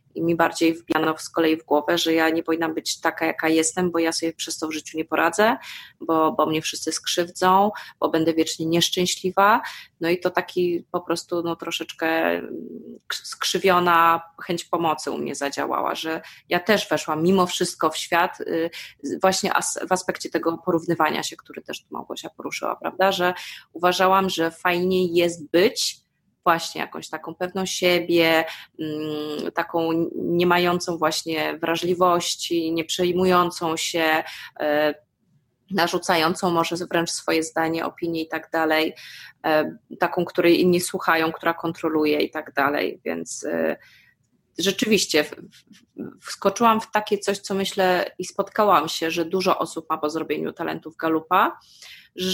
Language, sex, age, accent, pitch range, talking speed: Polish, female, 20-39, native, 160-180 Hz, 145 wpm